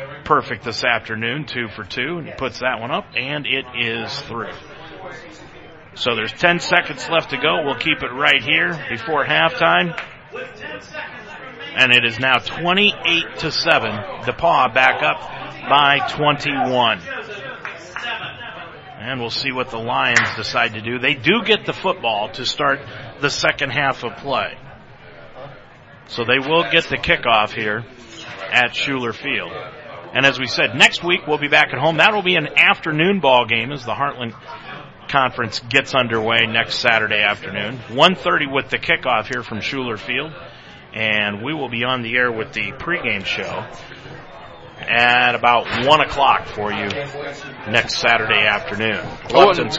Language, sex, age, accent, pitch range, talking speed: English, male, 40-59, American, 120-160 Hz, 155 wpm